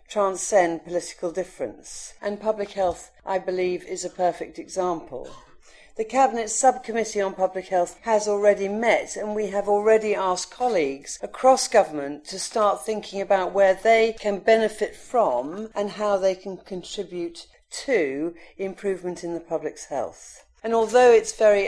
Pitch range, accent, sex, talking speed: 175-220 Hz, British, female, 145 wpm